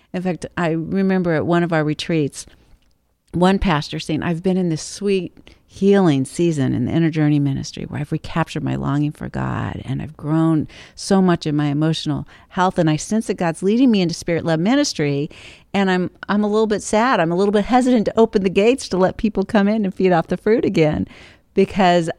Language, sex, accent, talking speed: English, female, American, 210 wpm